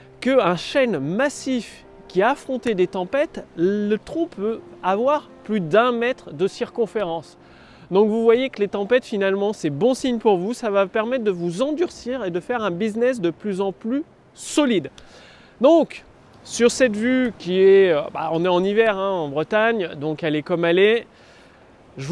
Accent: French